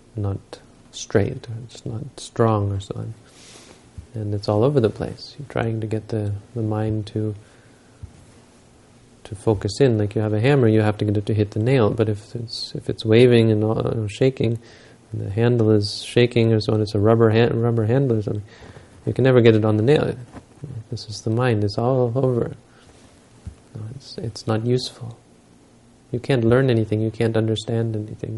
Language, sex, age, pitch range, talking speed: English, male, 30-49, 110-120 Hz, 195 wpm